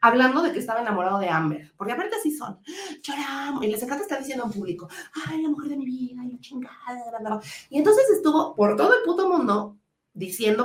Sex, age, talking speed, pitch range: female, 40-59, 220 wpm, 190-260 Hz